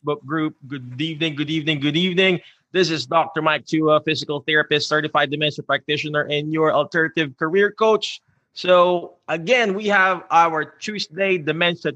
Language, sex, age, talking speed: English, male, 20-39, 150 wpm